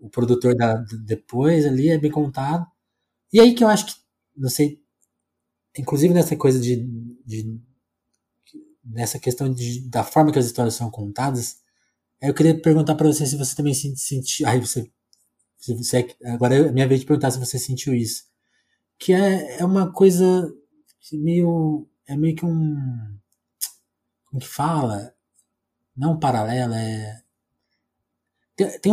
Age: 20-39